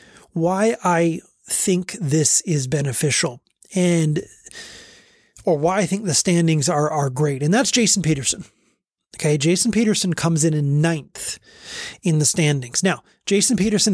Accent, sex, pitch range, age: American, male, 155-210 Hz, 30-49